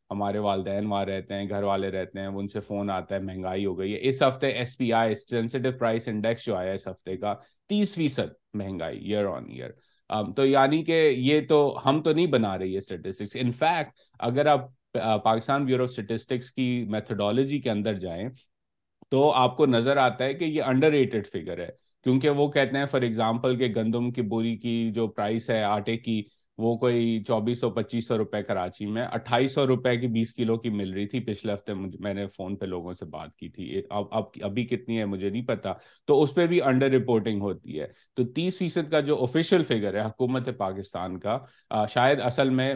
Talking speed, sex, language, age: 200 wpm, male, Urdu, 30-49